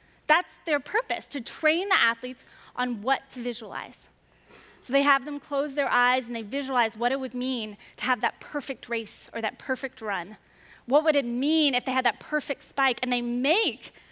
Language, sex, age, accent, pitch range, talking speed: English, female, 20-39, American, 235-285 Hz, 200 wpm